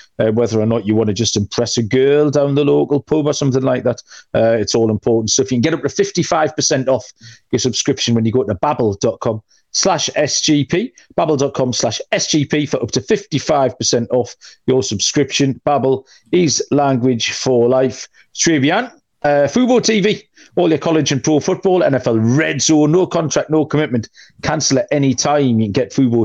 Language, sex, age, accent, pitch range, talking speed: English, male, 40-59, British, 120-155 Hz, 185 wpm